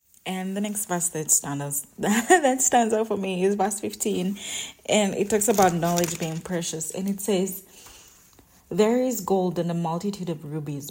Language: English